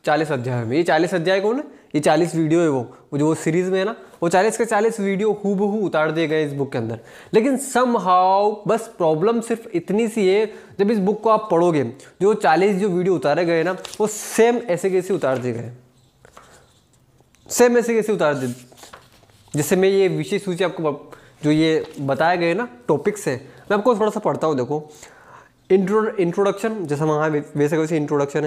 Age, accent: 20-39, native